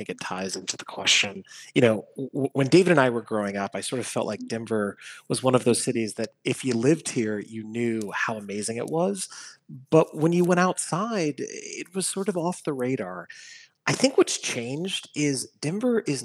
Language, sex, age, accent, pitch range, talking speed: English, male, 30-49, American, 115-150 Hz, 205 wpm